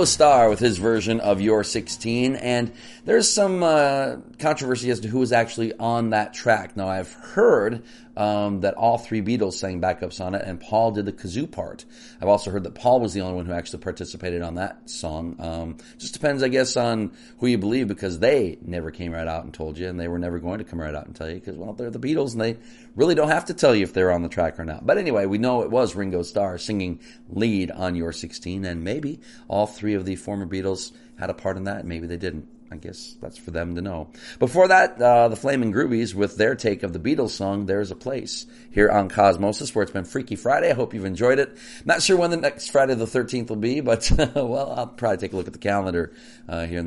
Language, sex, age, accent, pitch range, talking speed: English, male, 40-59, American, 90-120 Hz, 245 wpm